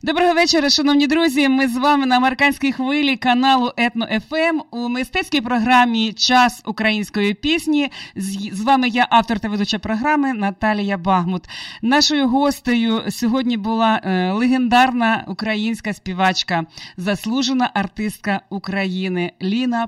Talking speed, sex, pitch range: 115 wpm, female, 210-260 Hz